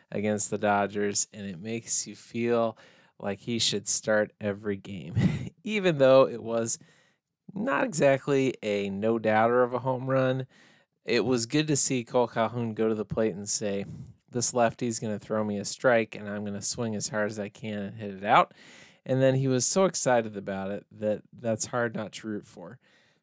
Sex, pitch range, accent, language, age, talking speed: male, 105-135 Hz, American, English, 20-39, 195 wpm